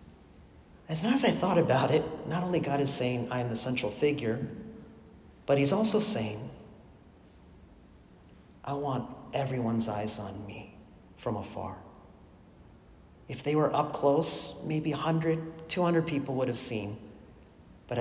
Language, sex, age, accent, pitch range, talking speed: English, male, 40-59, American, 110-150 Hz, 140 wpm